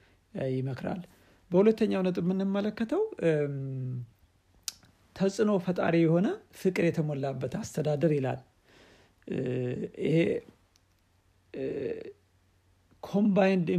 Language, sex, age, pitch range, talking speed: Amharic, male, 60-79, 140-180 Hz, 60 wpm